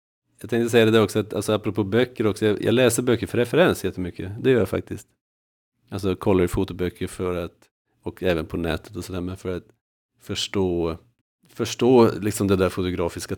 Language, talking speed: Swedish, 190 wpm